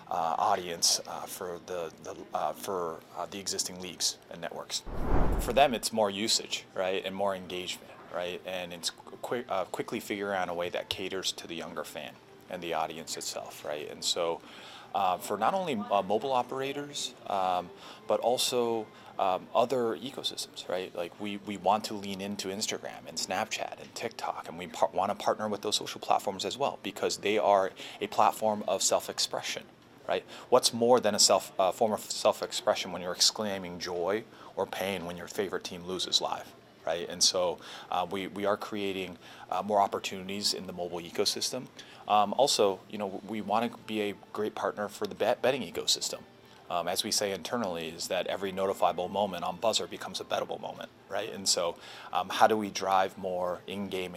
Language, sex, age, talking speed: English, male, 30-49, 190 wpm